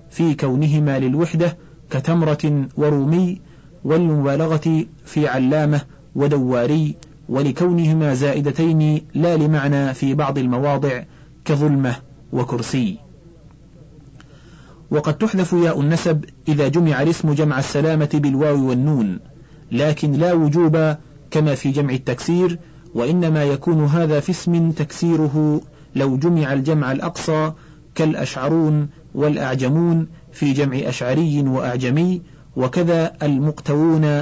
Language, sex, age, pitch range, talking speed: Arabic, male, 40-59, 140-160 Hz, 95 wpm